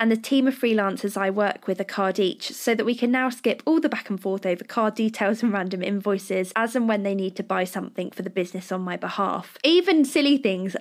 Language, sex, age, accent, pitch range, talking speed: English, female, 10-29, British, 195-240 Hz, 250 wpm